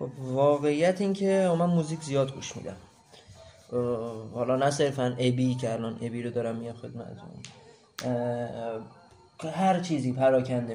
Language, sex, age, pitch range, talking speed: Persian, male, 20-39, 125-145 Hz, 135 wpm